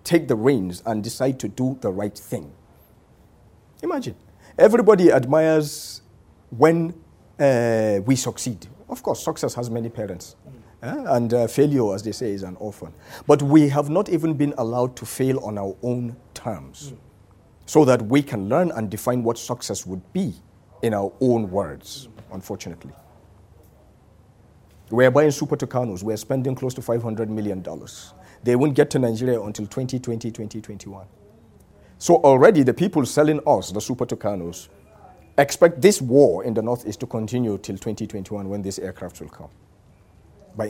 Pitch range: 105-135 Hz